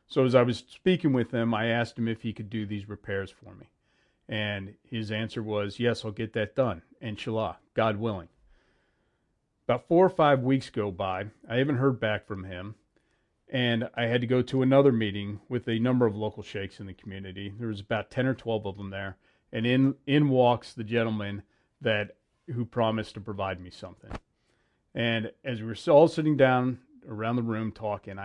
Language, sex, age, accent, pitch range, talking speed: English, male, 40-59, American, 105-125 Hz, 200 wpm